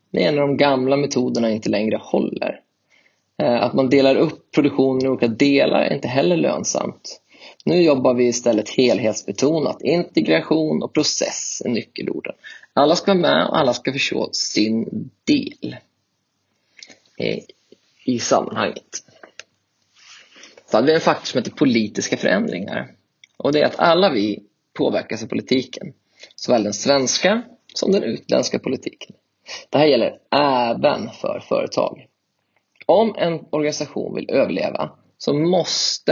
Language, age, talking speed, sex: Swedish, 30-49, 135 wpm, male